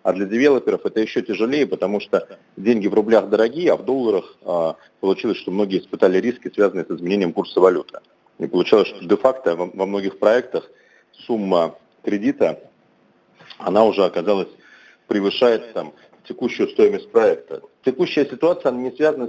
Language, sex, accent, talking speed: Russian, male, native, 145 wpm